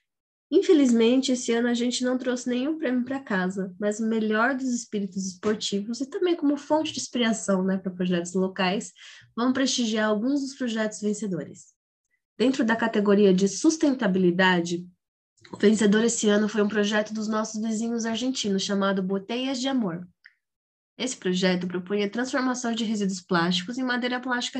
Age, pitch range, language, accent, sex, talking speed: 20-39, 195-245 Hz, Portuguese, Brazilian, female, 155 wpm